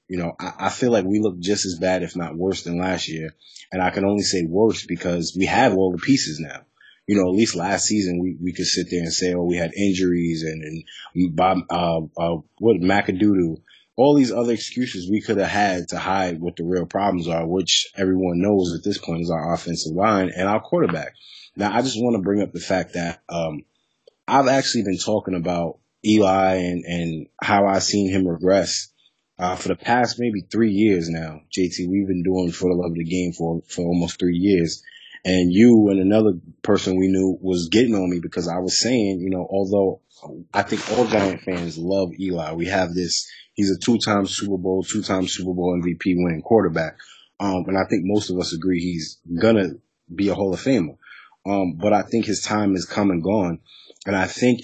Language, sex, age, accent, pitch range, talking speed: English, male, 20-39, American, 85-100 Hz, 210 wpm